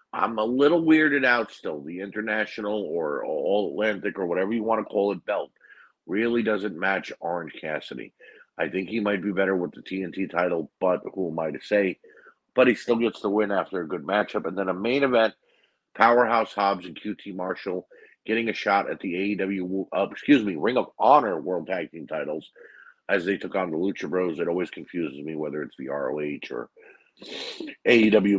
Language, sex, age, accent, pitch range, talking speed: English, male, 50-69, American, 90-115 Hz, 195 wpm